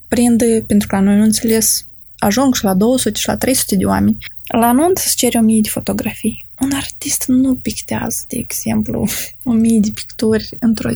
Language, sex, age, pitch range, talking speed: Romanian, female, 20-39, 210-240 Hz, 175 wpm